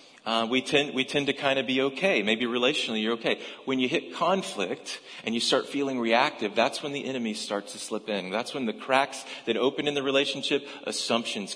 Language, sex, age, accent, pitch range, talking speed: English, male, 40-59, American, 105-150 Hz, 215 wpm